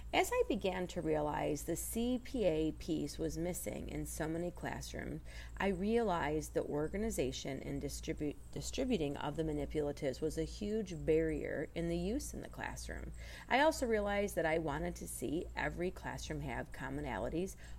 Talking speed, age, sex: 150 wpm, 40-59, female